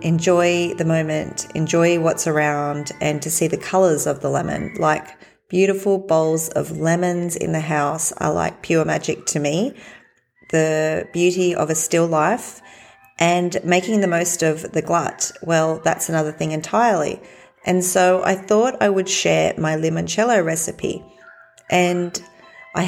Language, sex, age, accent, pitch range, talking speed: English, female, 30-49, Australian, 155-185 Hz, 150 wpm